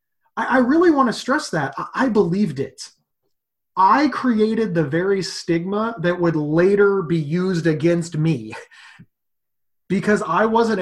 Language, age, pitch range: English, 30-49, 160-200 Hz